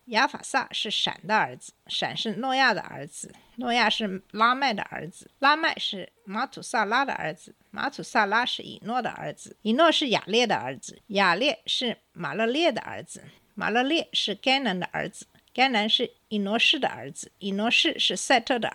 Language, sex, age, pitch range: Chinese, female, 50-69, 195-275 Hz